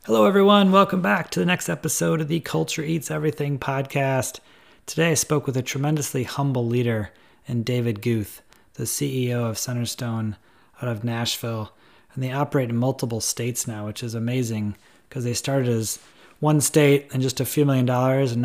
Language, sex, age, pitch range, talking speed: English, male, 30-49, 120-140 Hz, 180 wpm